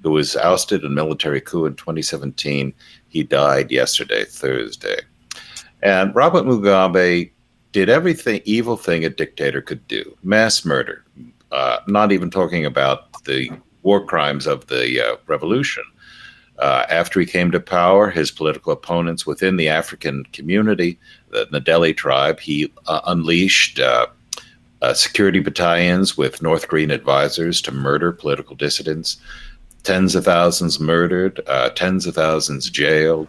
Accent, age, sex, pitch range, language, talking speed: American, 60-79, male, 80-100 Hz, English, 140 wpm